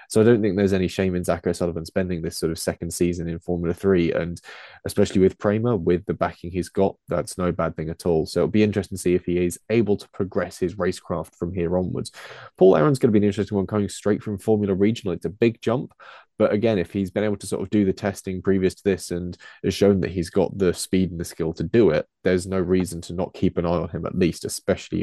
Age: 20-39